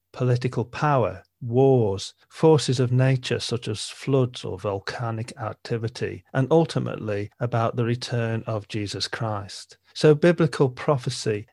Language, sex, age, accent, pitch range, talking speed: English, male, 40-59, British, 115-135 Hz, 120 wpm